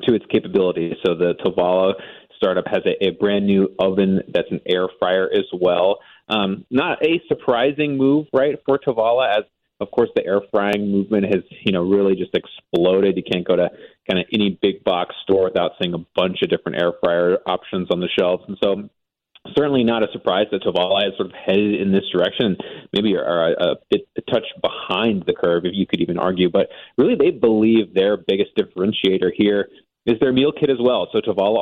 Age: 30-49